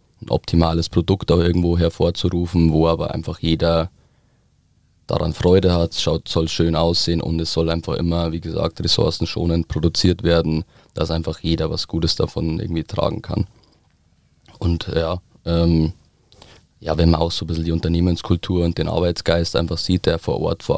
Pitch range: 80-85 Hz